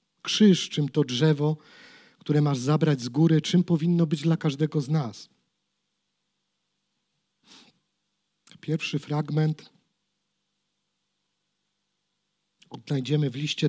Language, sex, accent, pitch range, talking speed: Polish, male, native, 145-170 Hz, 90 wpm